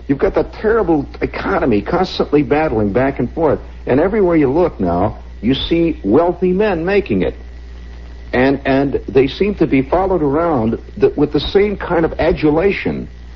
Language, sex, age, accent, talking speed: English, male, 60-79, American, 155 wpm